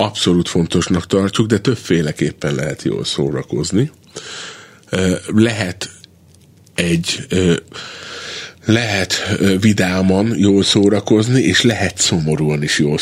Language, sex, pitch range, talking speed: Hungarian, male, 90-110 Hz, 90 wpm